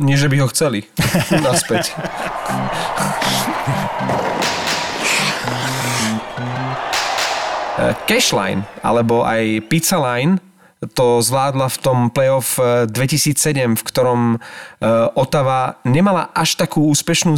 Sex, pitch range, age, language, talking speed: male, 120-145 Hz, 30-49, Slovak, 85 wpm